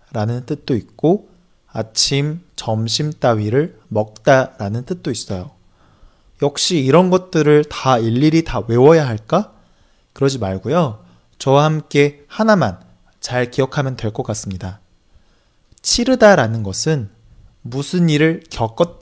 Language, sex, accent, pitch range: Chinese, male, Korean, 110-165 Hz